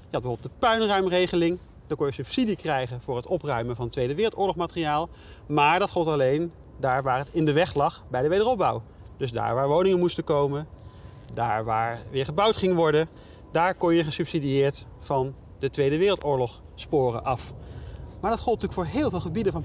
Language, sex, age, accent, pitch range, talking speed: Dutch, male, 30-49, Dutch, 130-180 Hz, 185 wpm